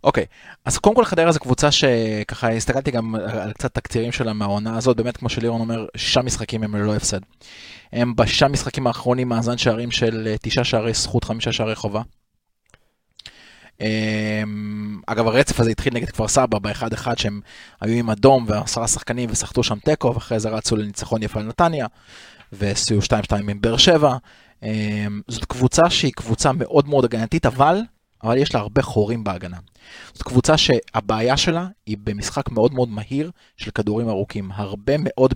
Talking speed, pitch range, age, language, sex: 160 wpm, 110-135 Hz, 20-39, Hebrew, male